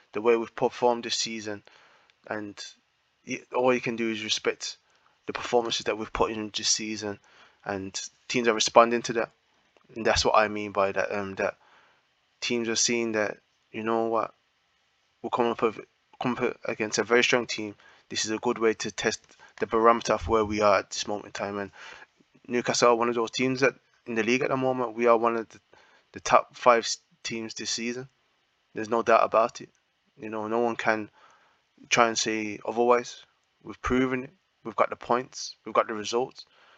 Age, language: 20-39, English